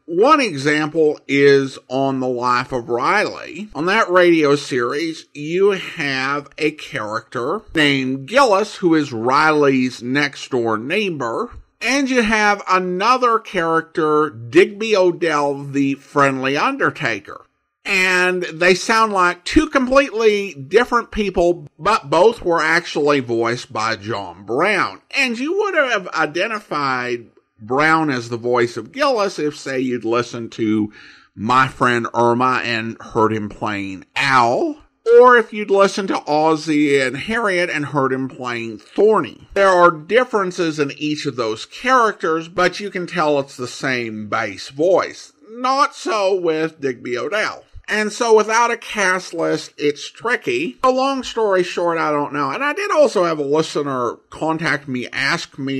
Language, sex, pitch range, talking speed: English, male, 130-195 Hz, 145 wpm